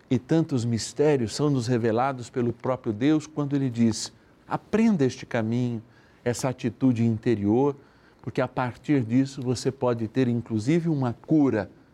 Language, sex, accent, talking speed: Portuguese, male, Brazilian, 140 wpm